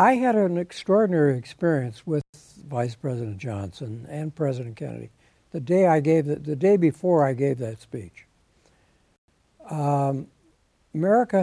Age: 60-79